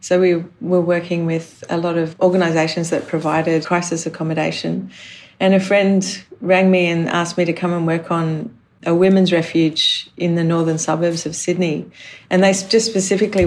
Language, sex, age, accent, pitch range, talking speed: English, female, 40-59, Australian, 160-180 Hz, 175 wpm